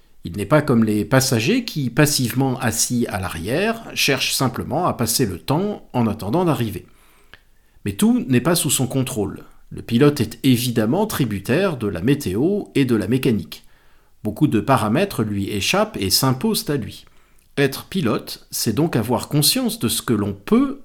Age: 50-69